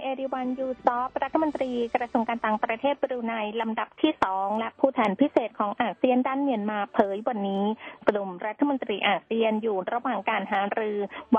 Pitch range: 205-255 Hz